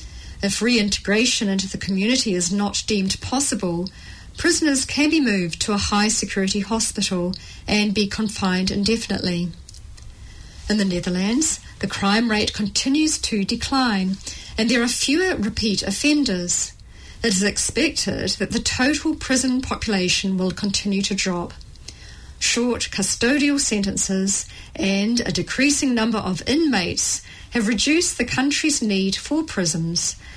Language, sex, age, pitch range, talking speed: English, female, 40-59, 195-255 Hz, 125 wpm